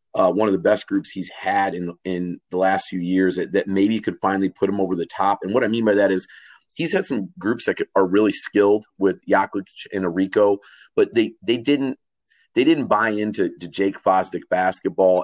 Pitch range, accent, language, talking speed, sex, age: 95-105 Hz, American, English, 215 wpm, male, 30-49